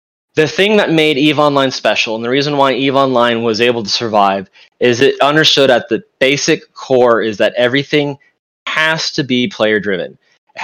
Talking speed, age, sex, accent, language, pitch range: 180 wpm, 20-39, male, American, English, 115-150 Hz